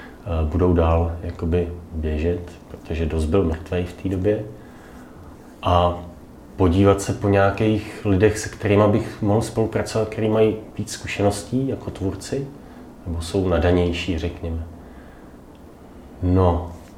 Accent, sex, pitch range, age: native, male, 85-105 Hz, 30-49